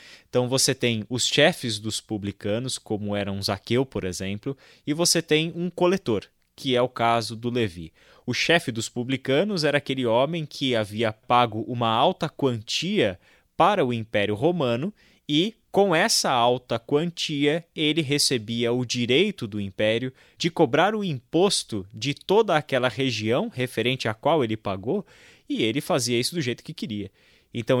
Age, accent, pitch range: 20-39, Brazilian, 115-145 Hz